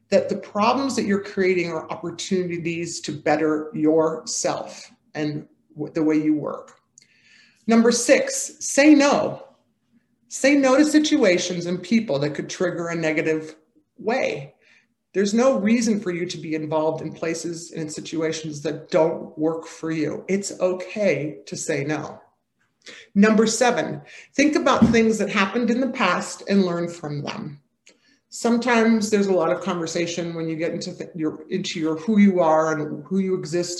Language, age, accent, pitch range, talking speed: English, 50-69, American, 160-215 Hz, 160 wpm